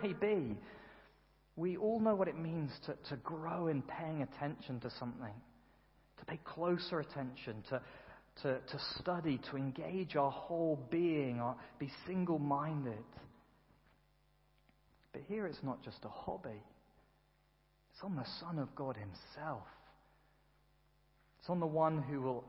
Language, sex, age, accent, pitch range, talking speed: English, male, 40-59, British, 125-160 Hz, 130 wpm